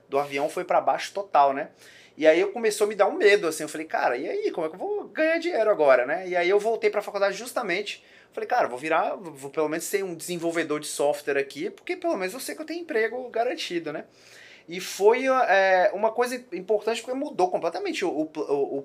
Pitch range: 155-220 Hz